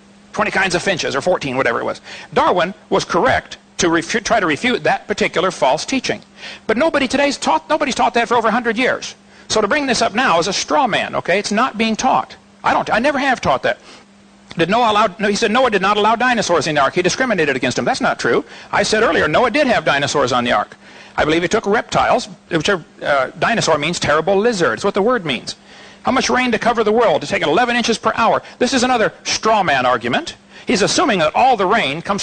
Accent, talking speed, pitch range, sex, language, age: American, 235 wpm, 195-245 Hz, male, Filipino, 60-79